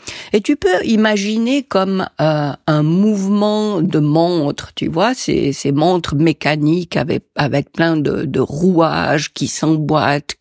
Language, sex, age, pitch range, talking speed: French, female, 50-69, 165-260 Hz, 140 wpm